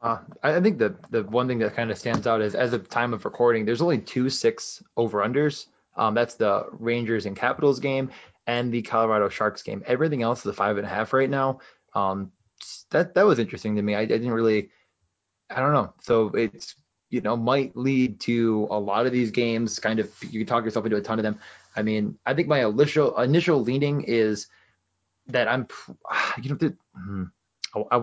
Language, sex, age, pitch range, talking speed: English, male, 20-39, 105-130 Hz, 210 wpm